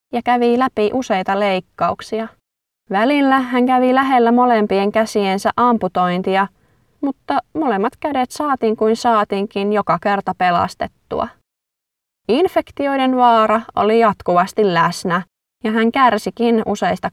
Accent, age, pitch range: native, 20-39, 190-235 Hz